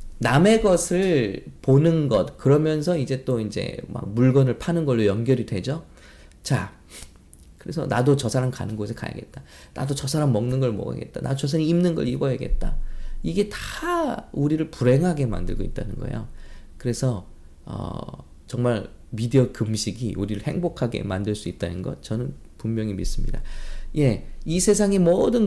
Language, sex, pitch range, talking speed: English, male, 105-150 Hz, 140 wpm